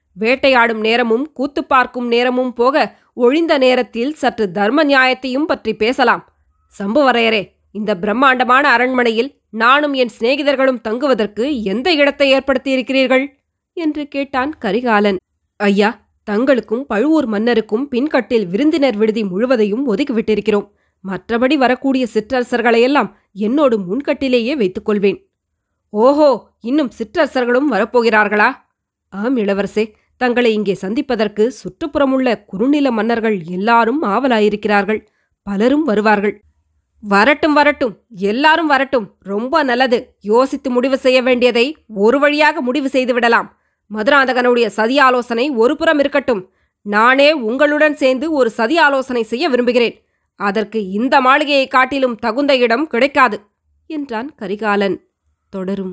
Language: Tamil